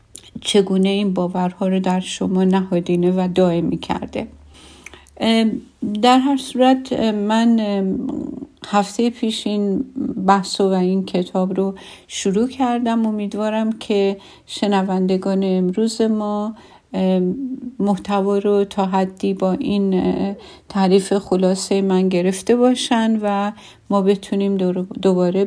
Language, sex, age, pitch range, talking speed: Persian, female, 50-69, 185-220 Hz, 105 wpm